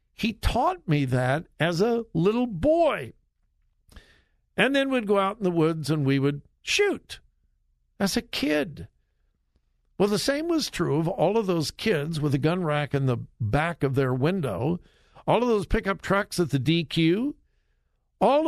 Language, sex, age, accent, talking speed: English, male, 60-79, American, 170 wpm